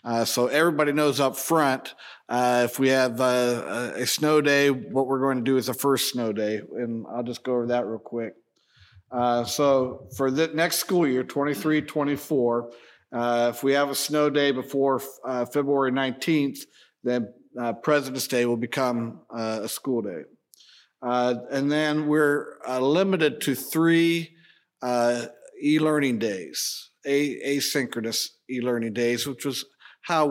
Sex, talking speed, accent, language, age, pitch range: male, 150 wpm, American, English, 50-69, 120-140 Hz